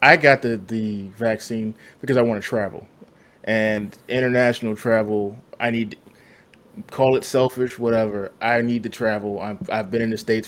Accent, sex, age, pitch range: American, male, 20-39, 110-120 Hz